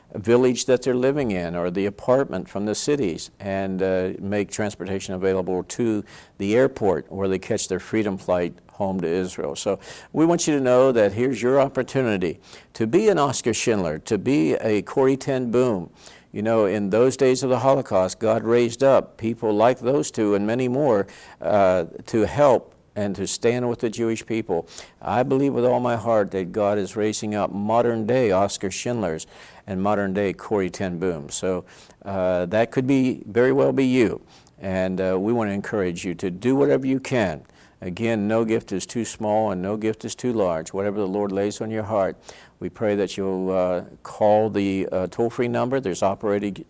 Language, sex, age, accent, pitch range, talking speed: English, male, 50-69, American, 95-120 Hz, 190 wpm